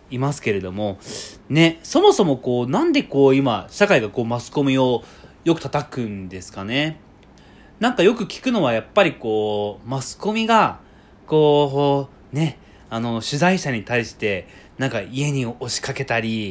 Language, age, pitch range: Japanese, 20-39, 110-155 Hz